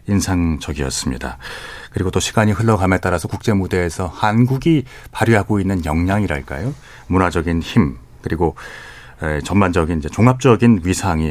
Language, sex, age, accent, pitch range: Korean, male, 40-59, native, 85-130 Hz